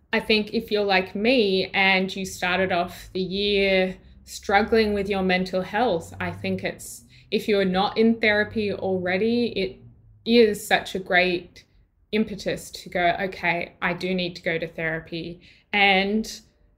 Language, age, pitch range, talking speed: English, 20-39, 185-215 Hz, 155 wpm